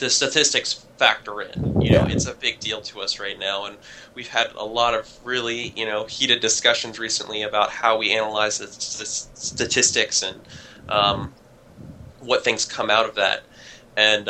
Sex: male